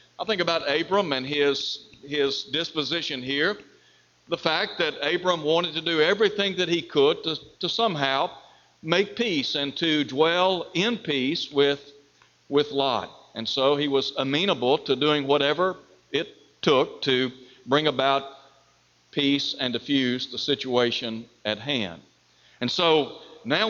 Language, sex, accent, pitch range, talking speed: English, male, American, 135-170 Hz, 140 wpm